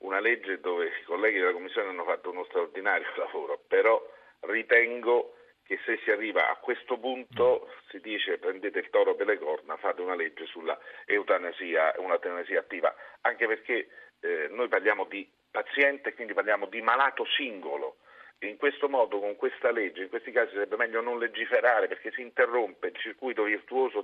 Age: 40-59